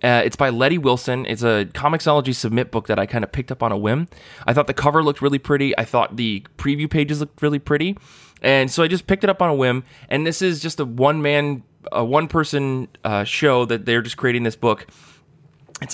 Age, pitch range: 20-39, 115-145 Hz